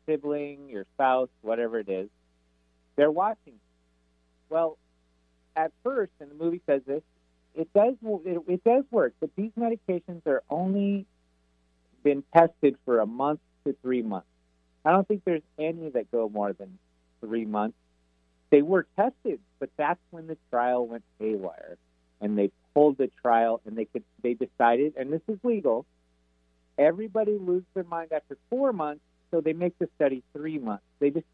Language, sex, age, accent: English, male, 40-59, American